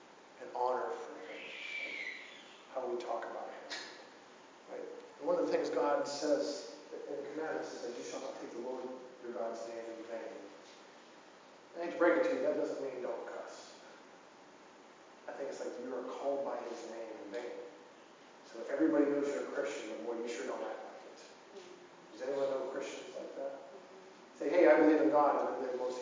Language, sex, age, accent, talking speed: English, male, 40-59, American, 205 wpm